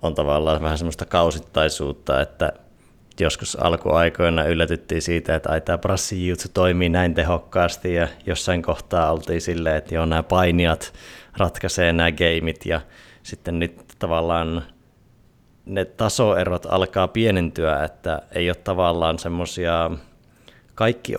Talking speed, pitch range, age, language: 120 wpm, 80-90 Hz, 30-49, Finnish